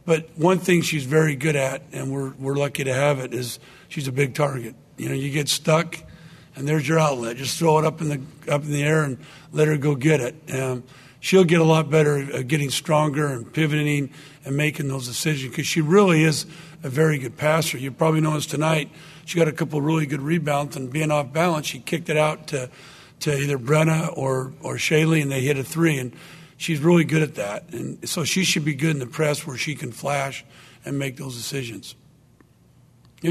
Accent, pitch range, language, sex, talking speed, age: American, 135-160 Hz, English, male, 220 wpm, 50-69